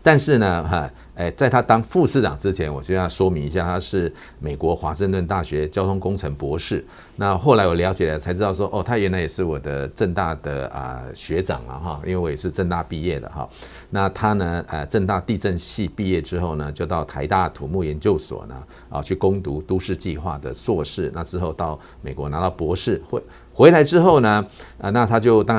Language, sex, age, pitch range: Chinese, male, 50-69, 80-105 Hz